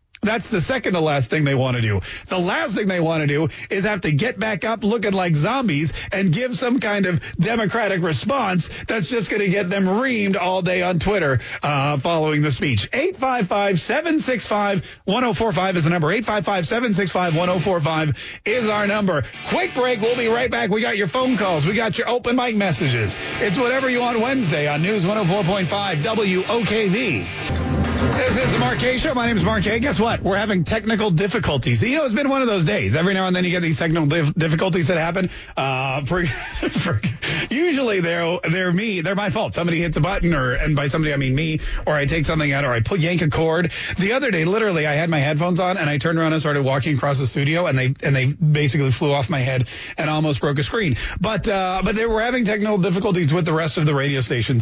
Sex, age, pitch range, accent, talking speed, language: male, 40-59, 150-215 Hz, American, 215 wpm, English